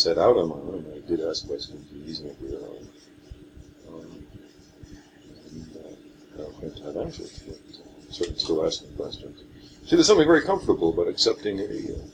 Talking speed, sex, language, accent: 185 wpm, male, English, American